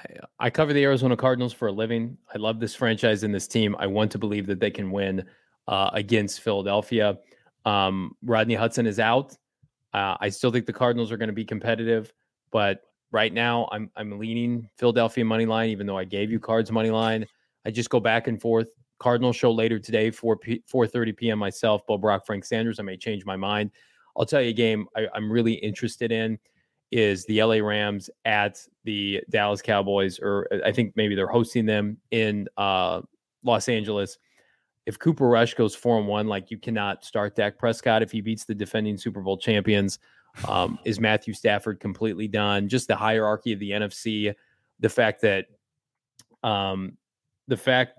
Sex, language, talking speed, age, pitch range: male, English, 190 wpm, 20-39, 105-115 Hz